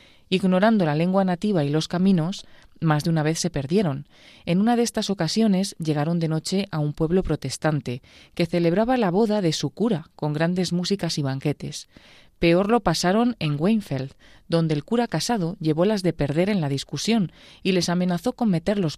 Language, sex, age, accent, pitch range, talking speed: Spanish, female, 30-49, Spanish, 155-190 Hz, 185 wpm